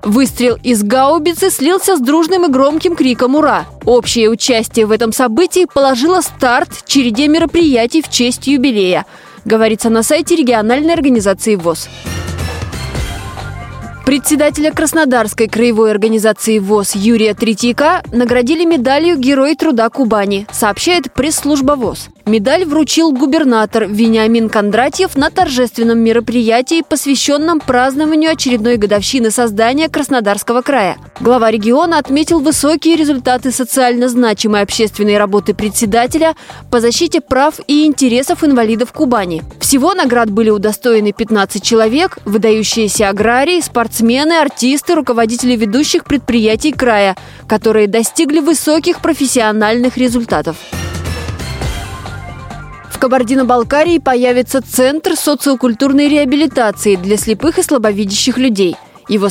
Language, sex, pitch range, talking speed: Russian, female, 220-295 Hz, 110 wpm